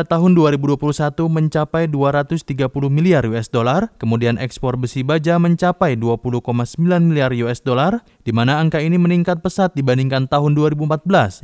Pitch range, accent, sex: 130-170 Hz, native, male